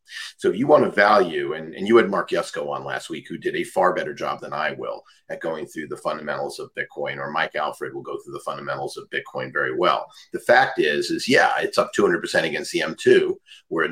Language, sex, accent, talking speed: English, male, American, 235 wpm